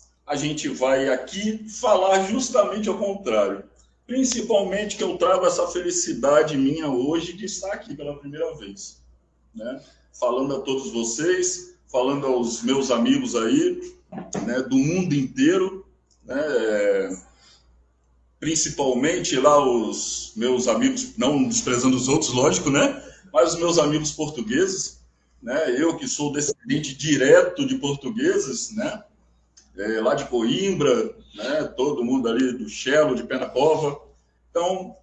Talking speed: 130 wpm